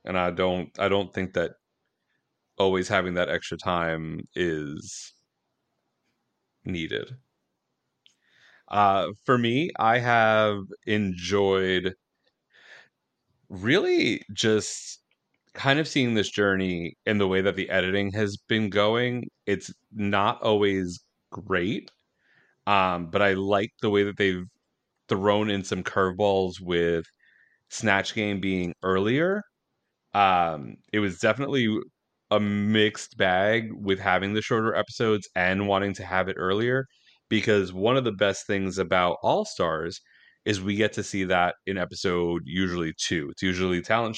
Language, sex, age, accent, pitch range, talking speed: English, male, 30-49, American, 95-110 Hz, 130 wpm